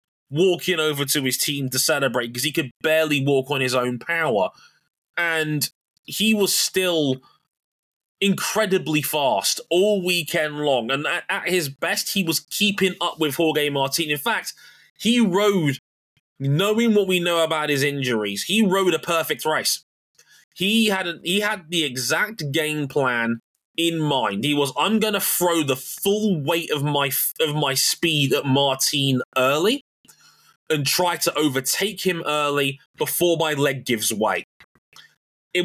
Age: 20-39